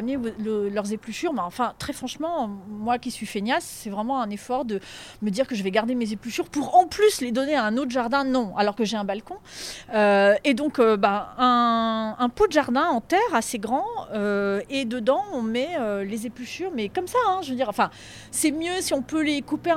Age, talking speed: 30-49, 235 wpm